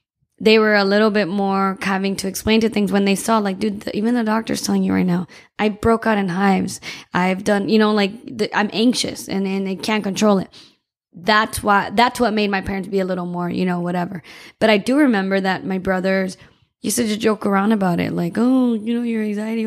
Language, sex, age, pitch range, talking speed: English, female, 20-39, 190-225 Hz, 225 wpm